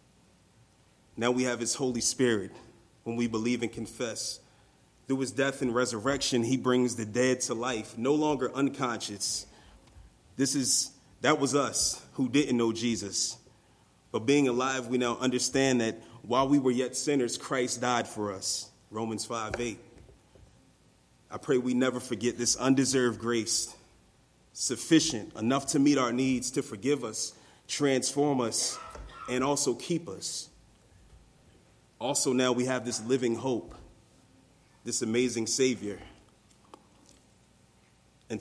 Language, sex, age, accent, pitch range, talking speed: English, male, 30-49, American, 110-130 Hz, 135 wpm